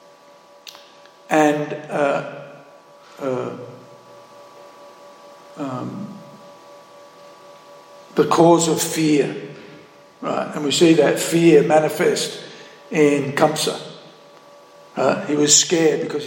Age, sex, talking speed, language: 60-79, male, 80 wpm, English